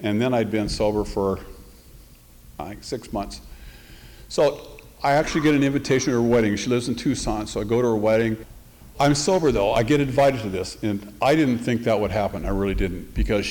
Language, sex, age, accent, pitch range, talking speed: English, male, 50-69, American, 100-120 Hz, 210 wpm